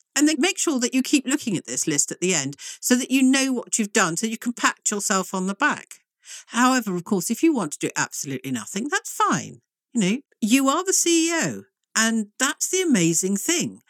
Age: 50-69